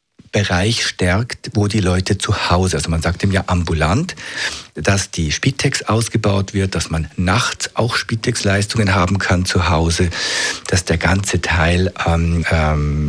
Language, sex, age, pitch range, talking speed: German, male, 50-69, 90-105 Hz, 150 wpm